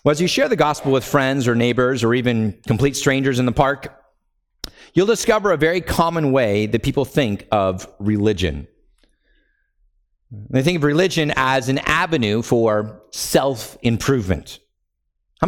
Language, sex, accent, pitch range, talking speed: English, male, American, 120-190 Hz, 145 wpm